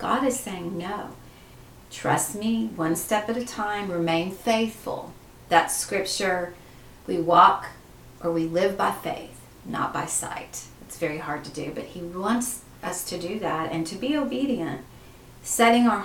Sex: female